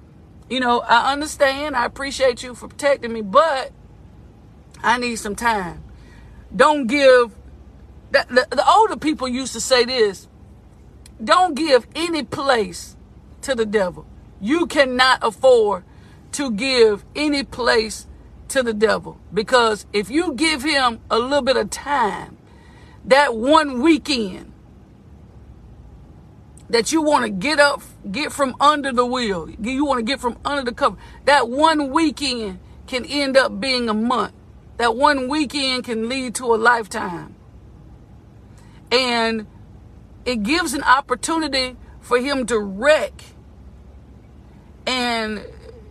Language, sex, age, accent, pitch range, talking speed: English, female, 50-69, American, 225-285 Hz, 130 wpm